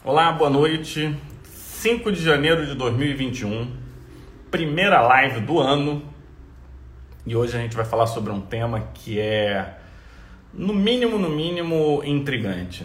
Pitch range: 100-145 Hz